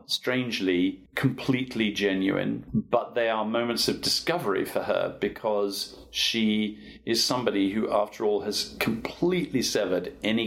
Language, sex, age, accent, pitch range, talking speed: English, male, 40-59, British, 95-115 Hz, 125 wpm